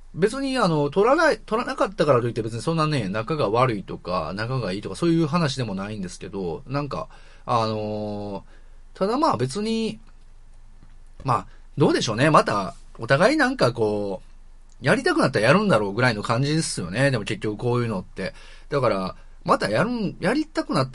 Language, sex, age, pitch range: Japanese, male, 30-49, 105-160 Hz